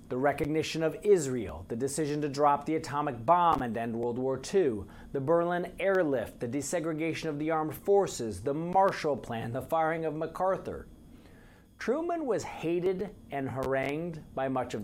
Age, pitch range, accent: 40-59, 130-175 Hz, American